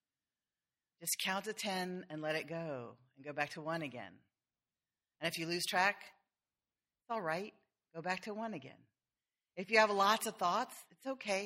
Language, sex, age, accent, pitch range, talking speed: English, female, 40-59, American, 155-195 Hz, 185 wpm